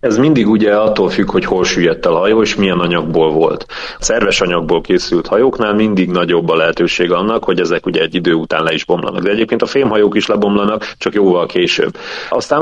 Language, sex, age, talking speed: Hungarian, male, 30-49, 205 wpm